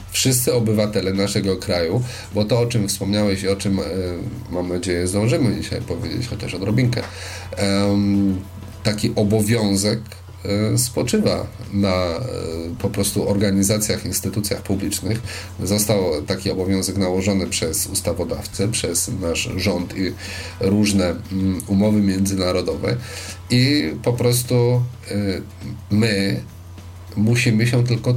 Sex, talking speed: male, 100 wpm